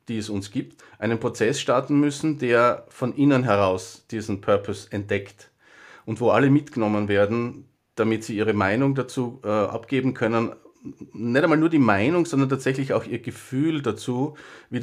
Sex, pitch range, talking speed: male, 110-140 Hz, 160 wpm